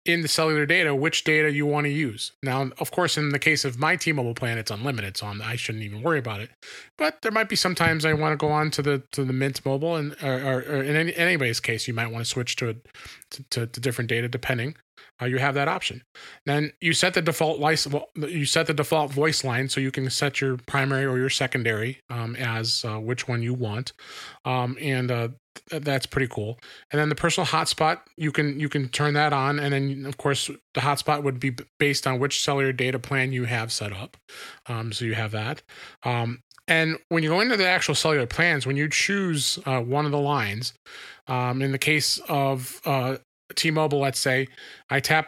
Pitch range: 130-155 Hz